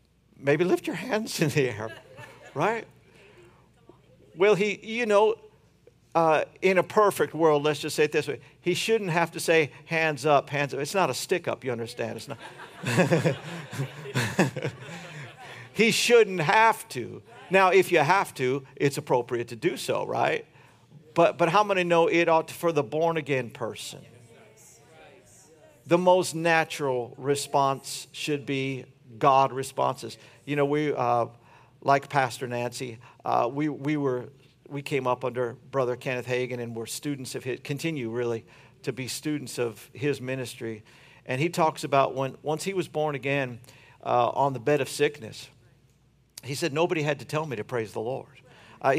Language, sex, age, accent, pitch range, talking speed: English, male, 50-69, American, 130-165 Hz, 165 wpm